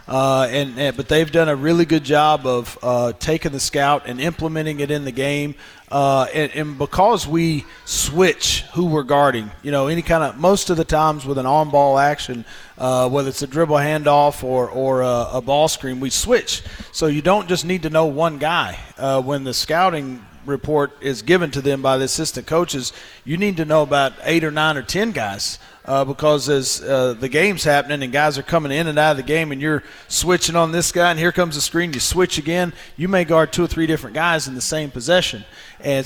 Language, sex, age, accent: English, male, 40-59, American